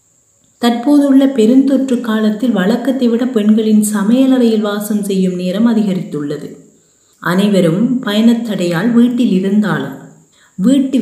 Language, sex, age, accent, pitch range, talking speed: Tamil, female, 30-49, native, 185-230 Hz, 85 wpm